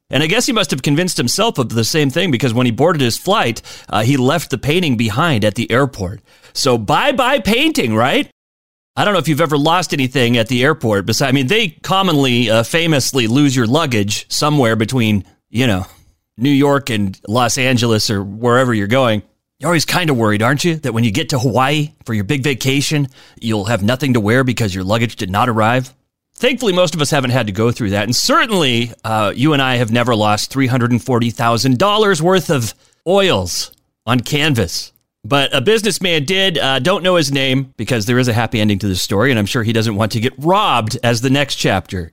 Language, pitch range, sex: English, 115-155 Hz, male